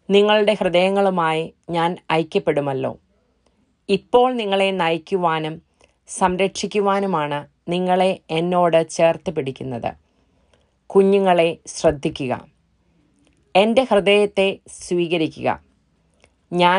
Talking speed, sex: 80 wpm, female